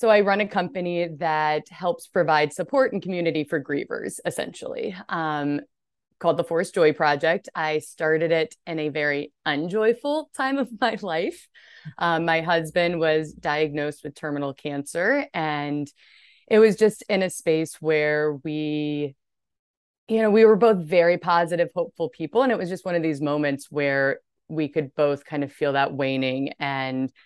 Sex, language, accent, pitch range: female, English, American, 145-185 Hz